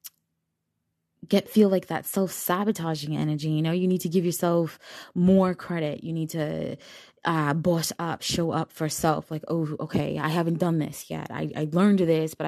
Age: 20-39